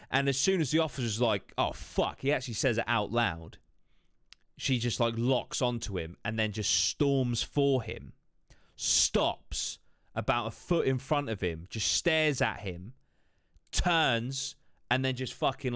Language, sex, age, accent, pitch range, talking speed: English, male, 30-49, British, 100-135 Hz, 170 wpm